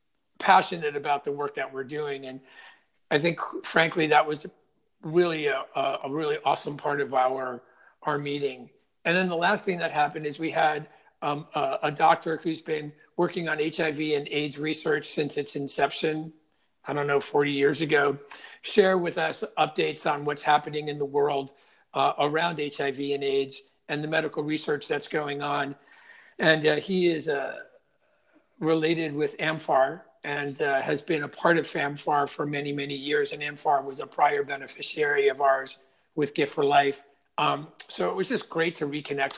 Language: English